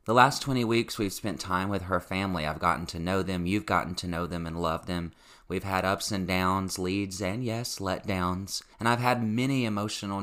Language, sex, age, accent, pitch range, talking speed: English, male, 30-49, American, 85-115 Hz, 215 wpm